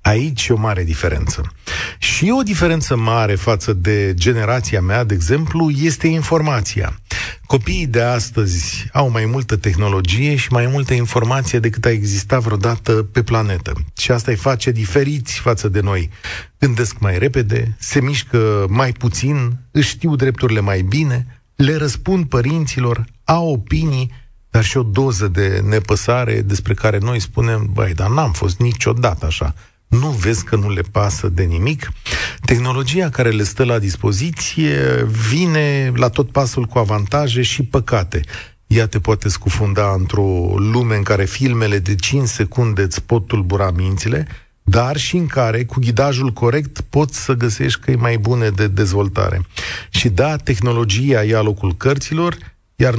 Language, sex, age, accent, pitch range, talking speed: Romanian, male, 40-59, native, 100-130 Hz, 155 wpm